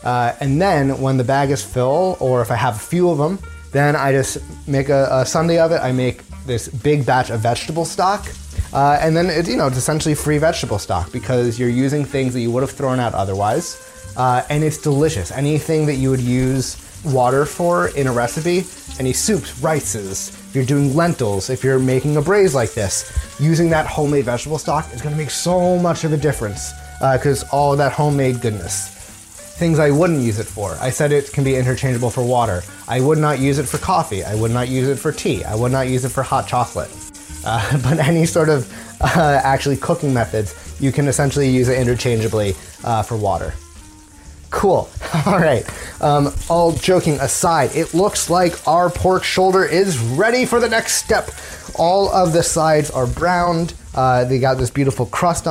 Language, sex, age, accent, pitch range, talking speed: English, male, 30-49, American, 120-155 Hz, 205 wpm